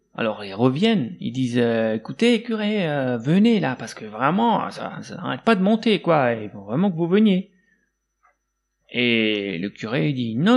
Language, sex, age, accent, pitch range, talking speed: French, male, 30-49, French, 125-200 Hz, 180 wpm